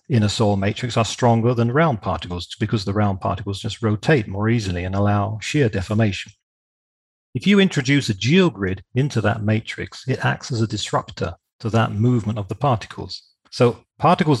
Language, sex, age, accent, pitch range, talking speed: English, male, 40-59, British, 105-135 Hz, 175 wpm